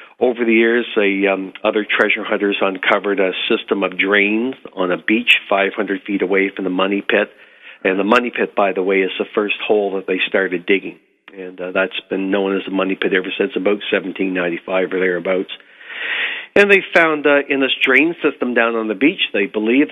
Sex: male